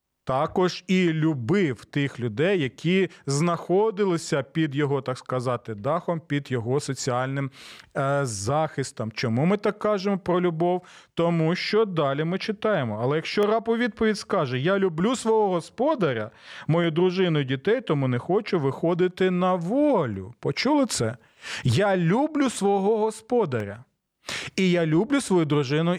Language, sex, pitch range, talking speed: Ukrainian, male, 145-190 Hz, 130 wpm